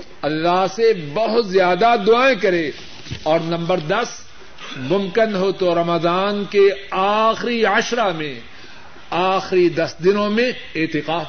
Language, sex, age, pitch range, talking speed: Urdu, male, 50-69, 165-220 Hz, 115 wpm